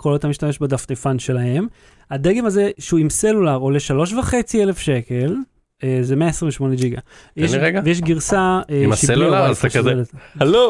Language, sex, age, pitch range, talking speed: Hebrew, male, 30-49, 135-190 Hz, 155 wpm